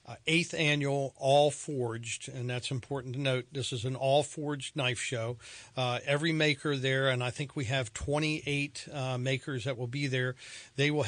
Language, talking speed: English, 190 wpm